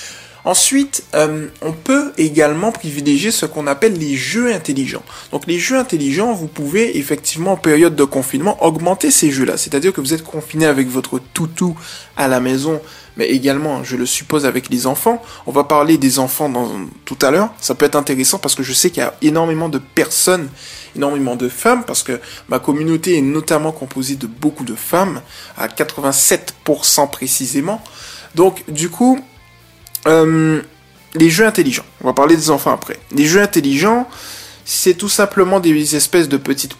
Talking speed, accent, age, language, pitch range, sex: 175 wpm, French, 20-39, French, 135-170 Hz, male